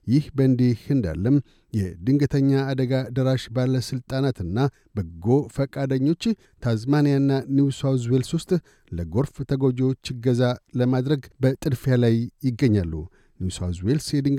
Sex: male